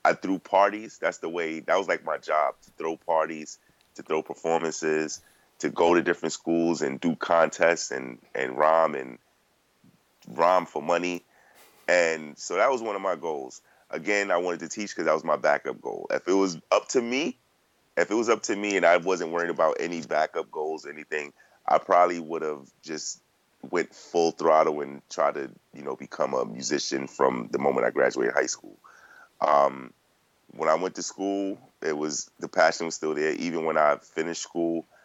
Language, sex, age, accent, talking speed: English, male, 30-49, American, 195 wpm